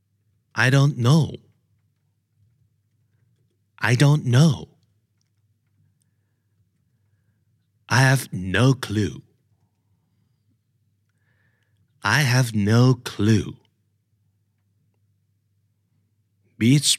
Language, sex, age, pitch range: Thai, male, 50-69, 105-120 Hz